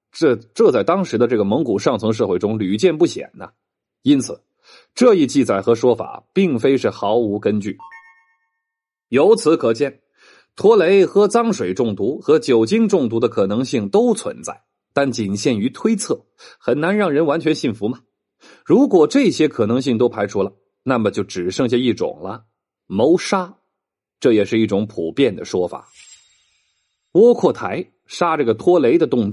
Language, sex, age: Chinese, male, 30-49